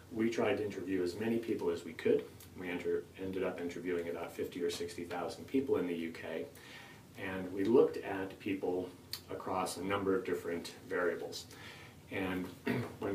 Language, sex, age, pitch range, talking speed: English, male, 30-49, 85-95 Hz, 165 wpm